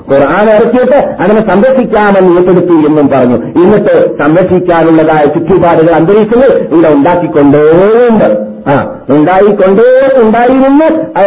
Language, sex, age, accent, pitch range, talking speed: Malayalam, male, 50-69, native, 150-230 Hz, 80 wpm